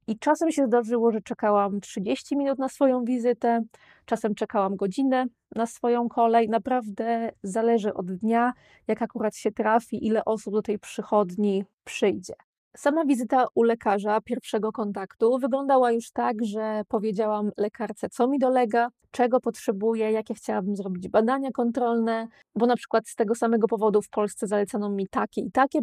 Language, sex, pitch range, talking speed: Polish, female, 215-250 Hz, 155 wpm